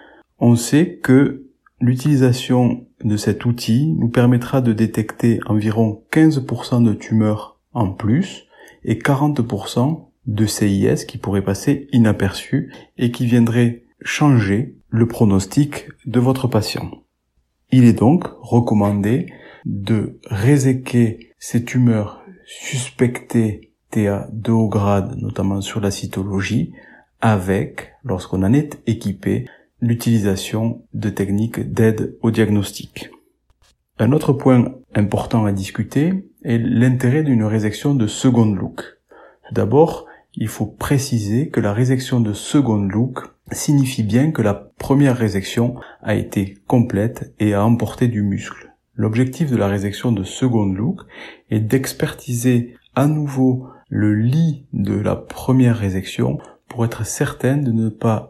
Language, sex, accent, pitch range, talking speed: French, male, French, 105-130 Hz, 125 wpm